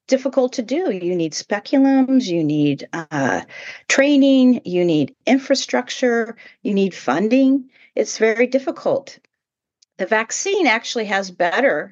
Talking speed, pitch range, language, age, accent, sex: 120 wpm, 160-250 Hz, English, 40-59, American, female